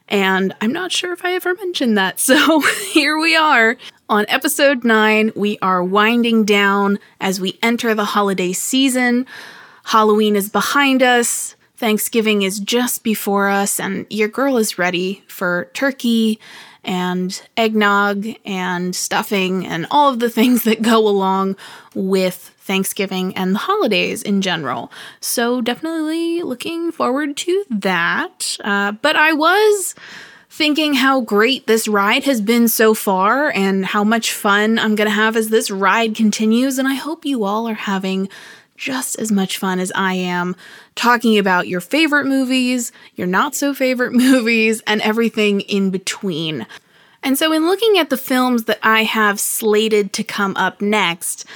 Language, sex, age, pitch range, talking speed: English, female, 20-39, 200-260 Hz, 155 wpm